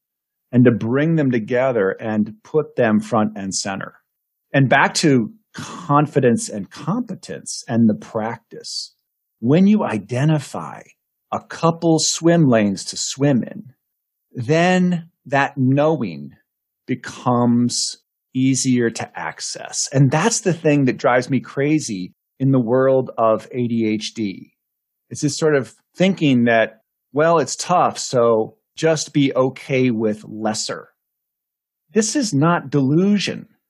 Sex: male